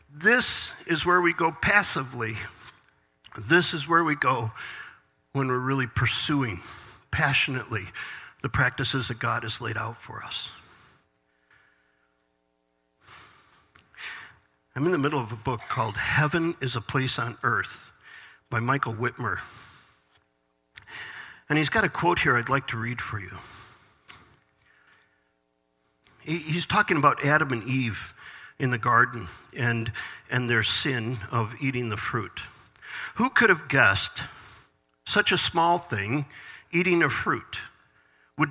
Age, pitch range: 50-69, 115-150 Hz